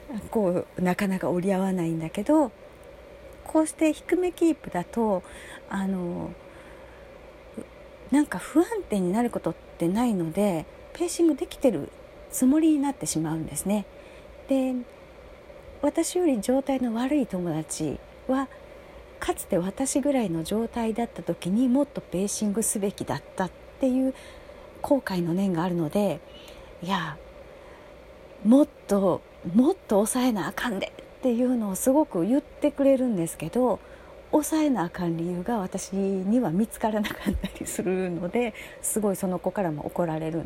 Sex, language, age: female, Japanese, 40-59